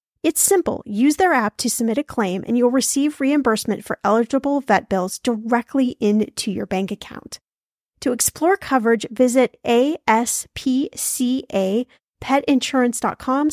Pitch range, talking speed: 215-270 Hz, 120 wpm